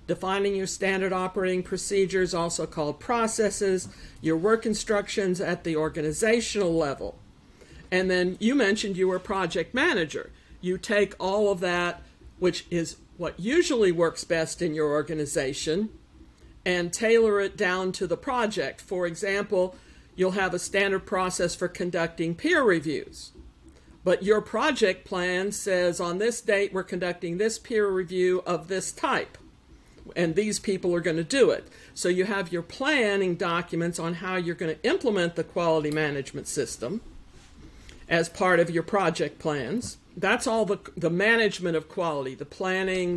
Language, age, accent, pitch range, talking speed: English, 50-69, American, 165-195 Hz, 155 wpm